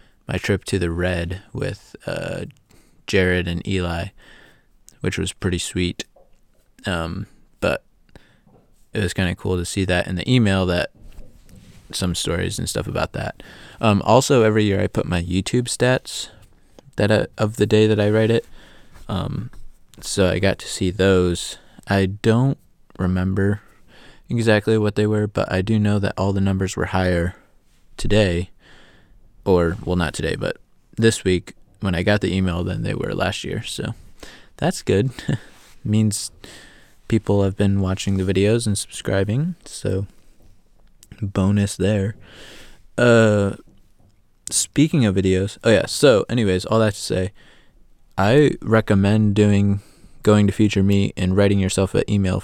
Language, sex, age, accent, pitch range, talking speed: English, male, 20-39, American, 95-105 Hz, 150 wpm